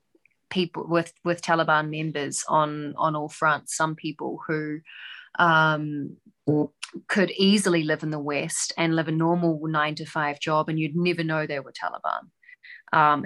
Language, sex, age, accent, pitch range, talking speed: English, female, 30-49, Australian, 150-170 Hz, 160 wpm